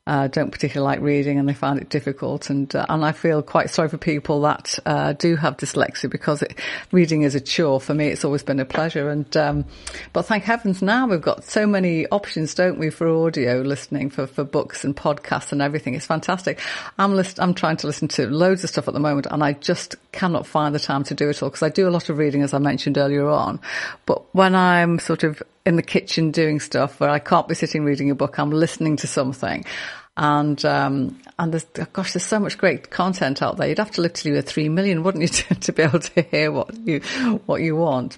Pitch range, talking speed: 140-165 Hz, 240 wpm